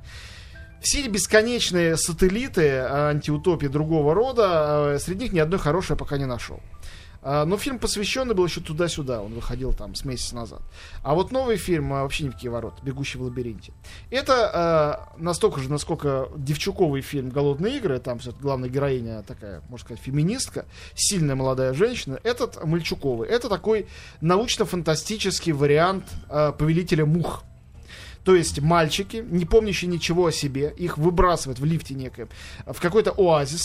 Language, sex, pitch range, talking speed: Russian, male, 135-180 Hz, 145 wpm